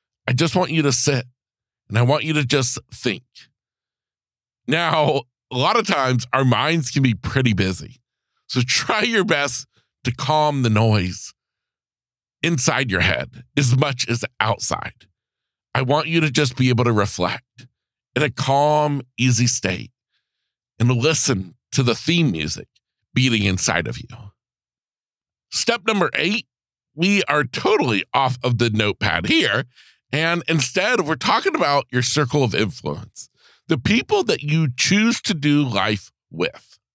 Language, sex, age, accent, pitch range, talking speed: English, male, 50-69, American, 120-160 Hz, 150 wpm